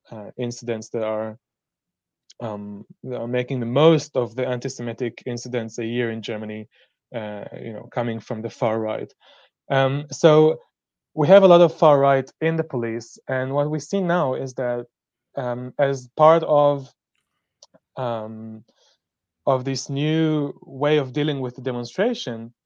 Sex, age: male, 20-39